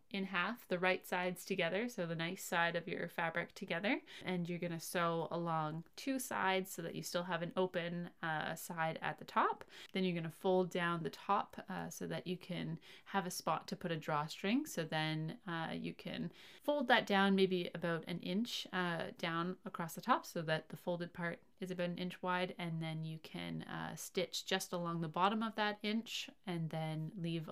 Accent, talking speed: American, 210 wpm